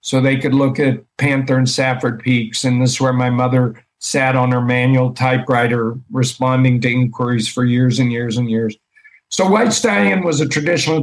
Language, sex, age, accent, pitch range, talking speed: English, male, 50-69, American, 120-135 Hz, 190 wpm